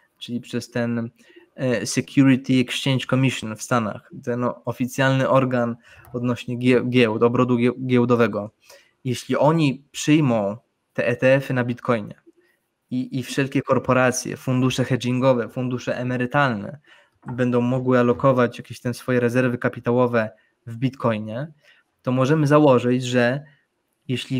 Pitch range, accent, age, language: 120-135 Hz, native, 20-39, Polish